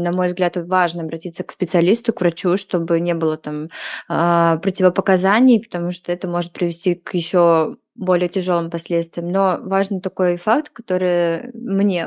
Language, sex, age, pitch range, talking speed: Russian, female, 20-39, 180-205 Hz, 150 wpm